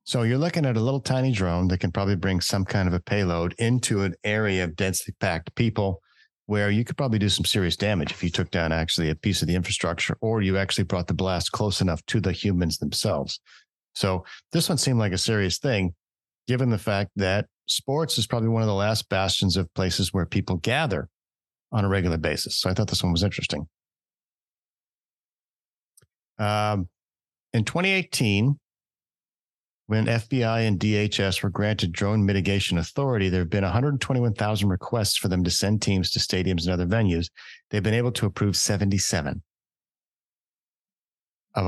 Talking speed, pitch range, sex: 180 wpm, 95-115 Hz, male